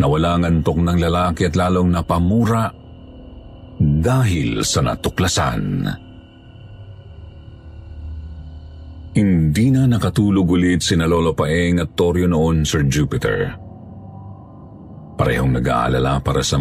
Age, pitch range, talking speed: 50-69, 80-95 Hz, 100 wpm